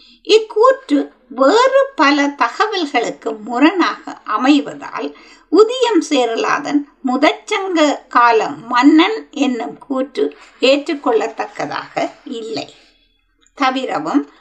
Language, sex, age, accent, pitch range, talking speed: Tamil, female, 60-79, native, 260-325 Hz, 60 wpm